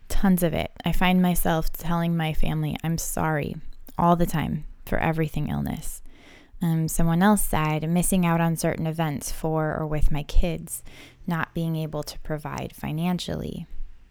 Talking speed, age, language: 155 wpm, 20-39, English